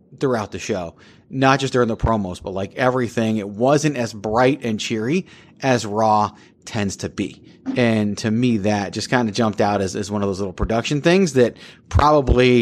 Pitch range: 110-150 Hz